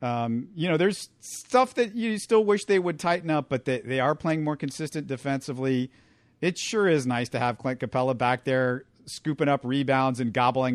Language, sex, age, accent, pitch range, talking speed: English, male, 50-69, American, 125-155 Hz, 200 wpm